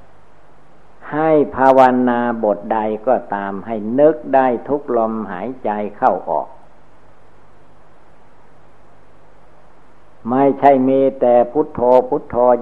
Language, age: Thai, 60-79